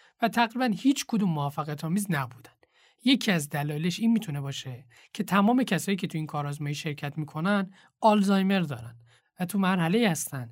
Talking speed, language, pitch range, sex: 160 wpm, Persian, 145-215 Hz, male